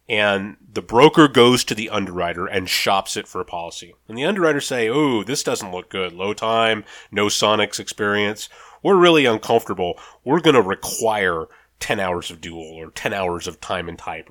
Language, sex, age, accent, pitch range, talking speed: English, male, 30-49, American, 100-150 Hz, 190 wpm